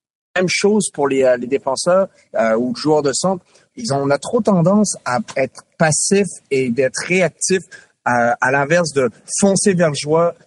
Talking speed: 185 wpm